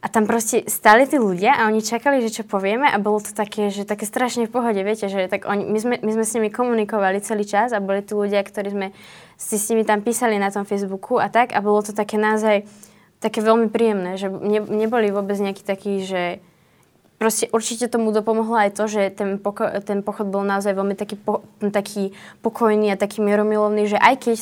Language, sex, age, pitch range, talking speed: Slovak, female, 20-39, 195-215 Hz, 215 wpm